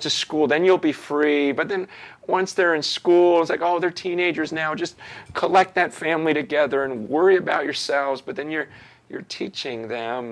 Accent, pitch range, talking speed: American, 110-155 Hz, 190 wpm